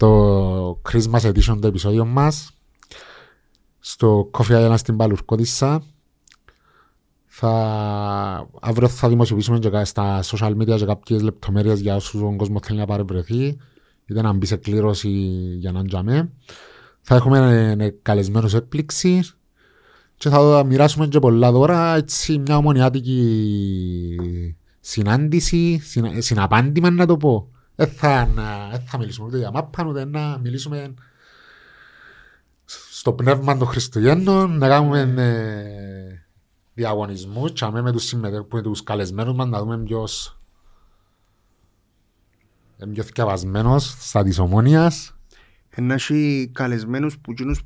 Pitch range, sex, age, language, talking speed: 105-145 Hz, male, 30-49, Greek, 120 wpm